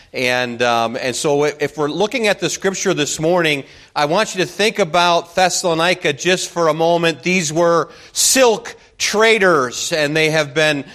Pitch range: 155-185 Hz